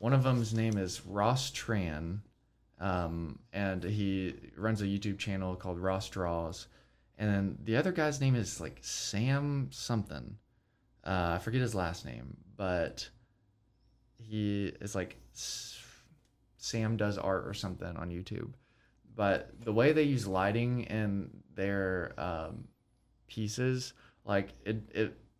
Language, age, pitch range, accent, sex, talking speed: English, 20-39, 95-120 Hz, American, male, 135 wpm